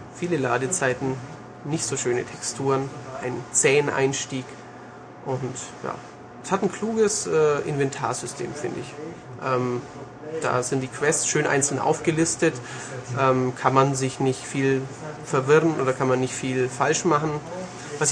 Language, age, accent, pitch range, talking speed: German, 30-49, German, 130-155 Hz, 140 wpm